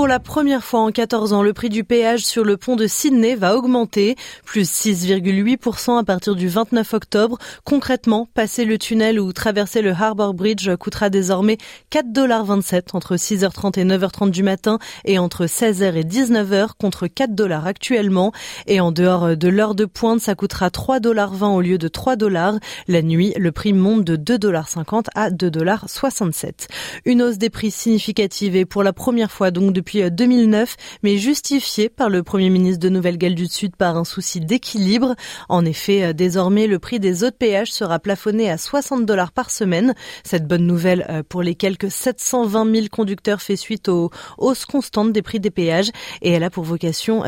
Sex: female